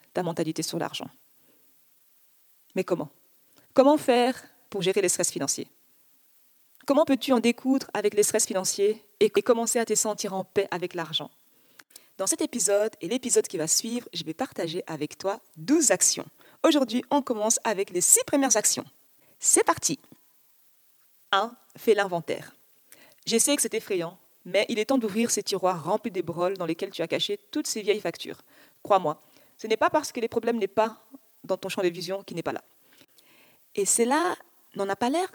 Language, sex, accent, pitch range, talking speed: French, female, French, 190-265 Hz, 180 wpm